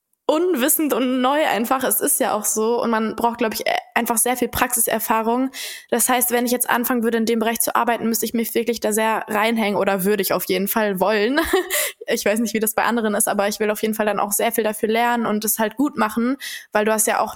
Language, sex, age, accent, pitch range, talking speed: German, female, 20-39, German, 220-260 Hz, 255 wpm